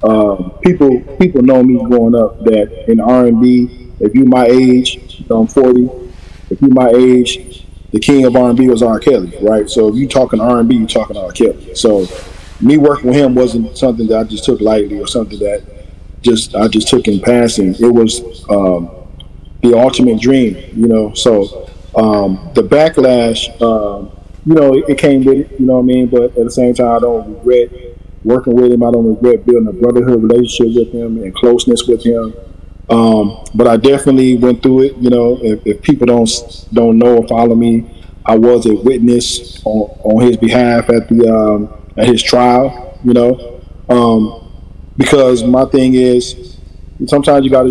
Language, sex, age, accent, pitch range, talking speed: English, male, 20-39, American, 110-125 Hz, 185 wpm